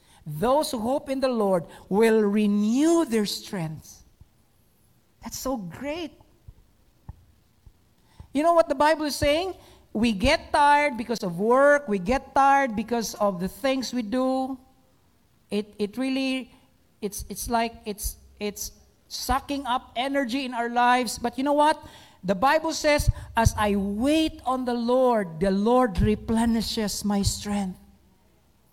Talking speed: 140 wpm